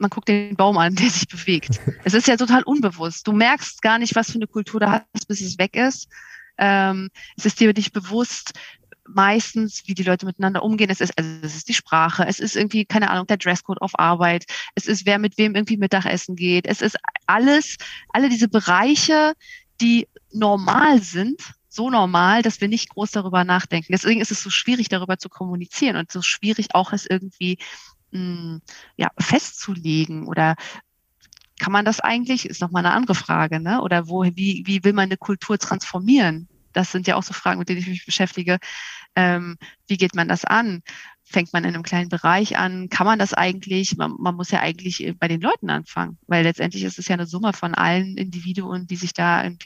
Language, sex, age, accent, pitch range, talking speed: German, female, 30-49, German, 175-215 Hz, 200 wpm